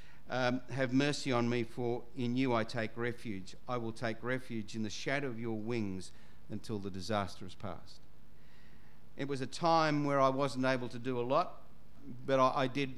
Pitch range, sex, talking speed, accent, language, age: 115-135 Hz, male, 195 wpm, Australian, English, 50-69